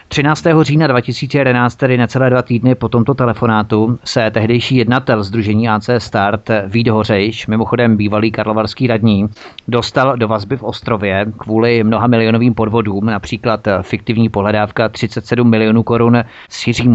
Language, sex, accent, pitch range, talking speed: Czech, male, native, 110-125 Hz, 135 wpm